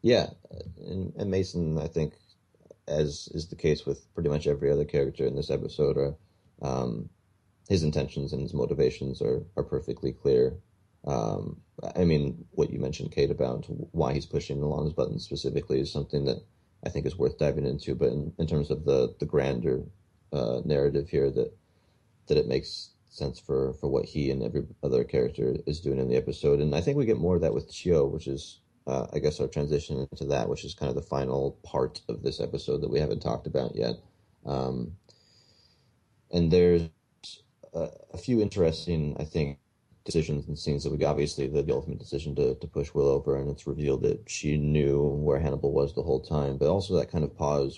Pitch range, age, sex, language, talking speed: 70-90 Hz, 30-49, male, English, 200 wpm